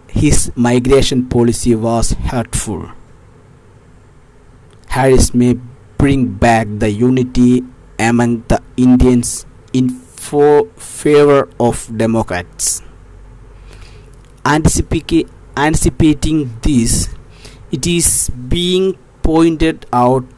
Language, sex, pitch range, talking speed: Malayalam, male, 110-135 Hz, 85 wpm